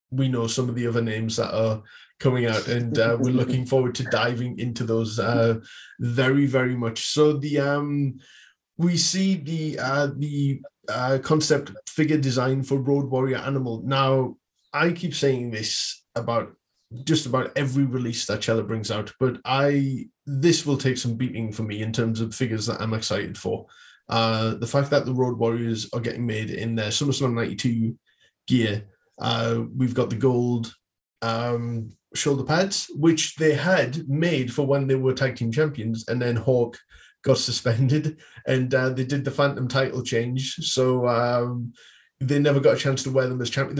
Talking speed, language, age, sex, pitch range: 180 wpm, English, 20-39, male, 115-140 Hz